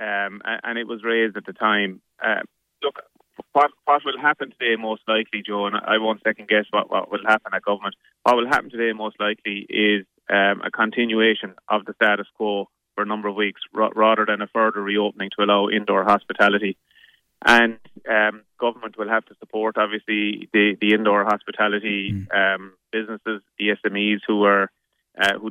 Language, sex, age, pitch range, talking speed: English, male, 20-39, 105-110 Hz, 180 wpm